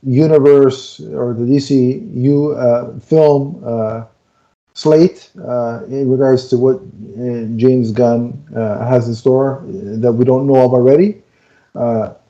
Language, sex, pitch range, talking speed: English, male, 125-155 Hz, 130 wpm